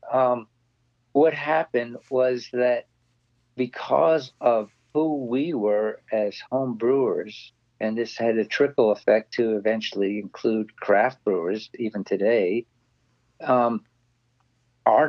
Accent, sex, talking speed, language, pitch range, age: American, male, 110 wpm, English, 115-130 Hz, 50-69